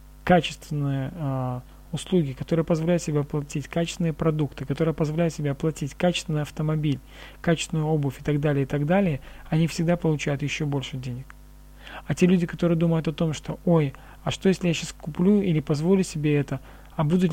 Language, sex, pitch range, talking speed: Russian, male, 140-170 Hz, 165 wpm